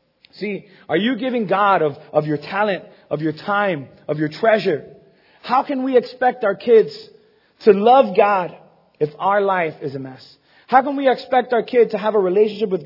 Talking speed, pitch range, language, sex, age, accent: 190 wpm, 160-215 Hz, English, male, 30-49, American